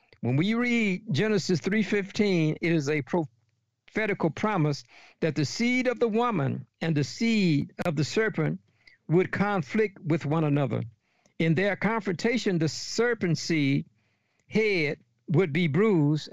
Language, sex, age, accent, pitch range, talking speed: English, male, 60-79, American, 140-200 Hz, 135 wpm